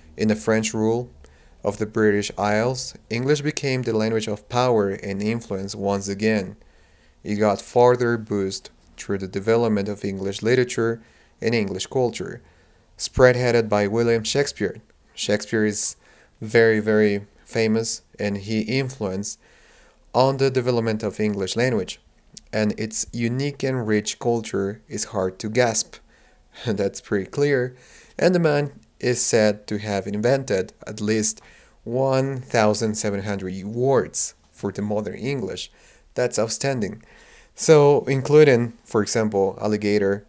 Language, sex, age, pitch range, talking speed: English, male, 30-49, 100-120 Hz, 125 wpm